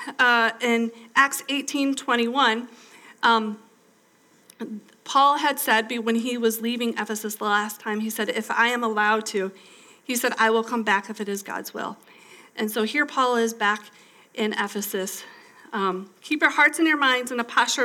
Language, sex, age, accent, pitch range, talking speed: English, female, 40-59, American, 215-270 Hz, 180 wpm